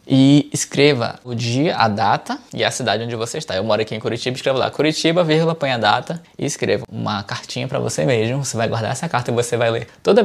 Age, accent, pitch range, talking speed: 10-29, Brazilian, 120-150 Hz, 240 wpm